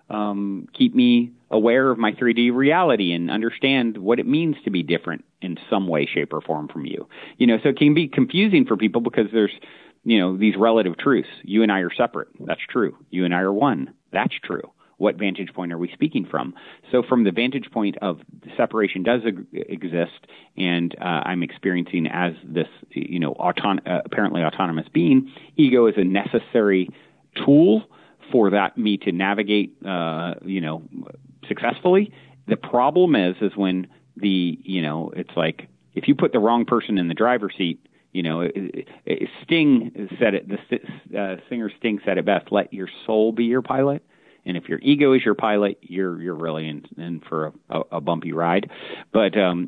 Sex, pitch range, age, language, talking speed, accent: male, 85-120 Hz, 40-59, English, 185 wpm, American